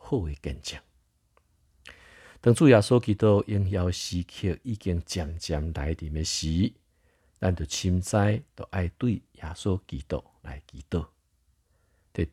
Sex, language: male, Chinese